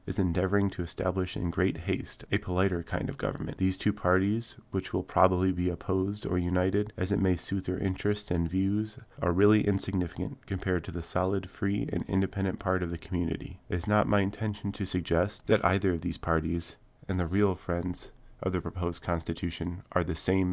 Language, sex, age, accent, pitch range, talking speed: English, male, 30-49, American, 85-100 Hz, 195 wpm